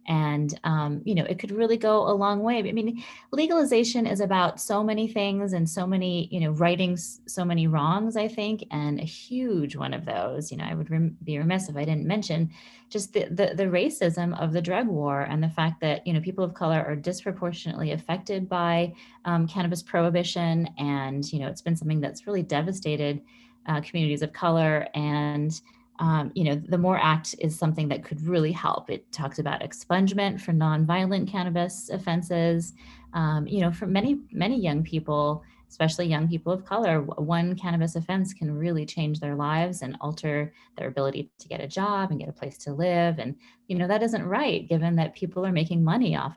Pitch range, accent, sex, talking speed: 155-195 Hz, American, female, 200 wpm